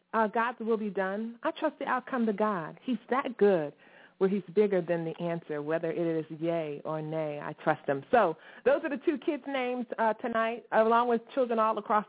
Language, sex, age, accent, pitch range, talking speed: English, female, 30-49, American, 175-255 Hz, 215 wpm